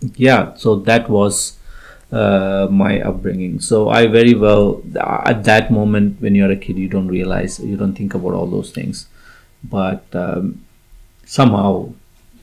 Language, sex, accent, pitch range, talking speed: English, male, Indian, 95-110 Hz, 150 wpm